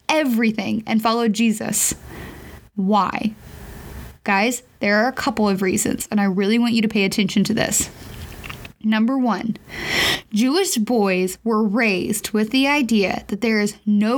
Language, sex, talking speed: English, female, 150 wpm